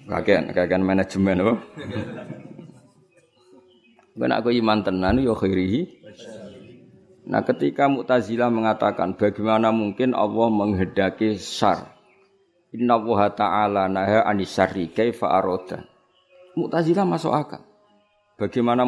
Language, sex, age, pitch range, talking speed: Indonesian, male, 50-69, 105-155 Hz, 60 wpm